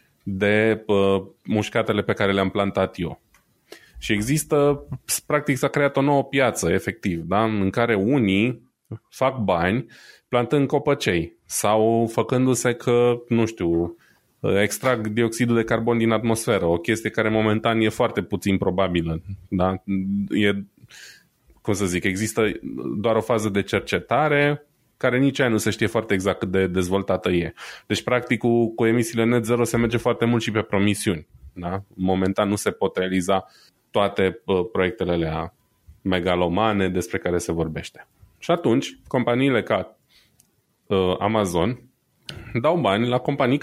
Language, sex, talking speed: Romanian, male, 140 wpm